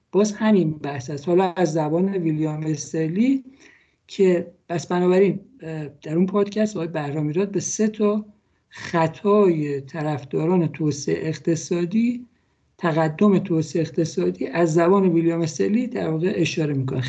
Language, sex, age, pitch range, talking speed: Persian, male, 60-79, 160-200 Hz, 125 wpm